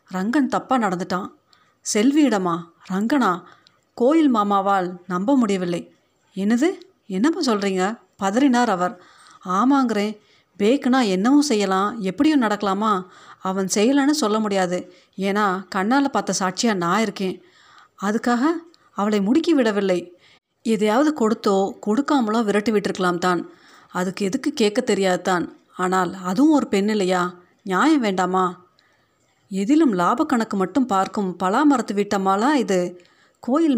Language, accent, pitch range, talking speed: Tamil, native, 190-260 Hz, 105 wpm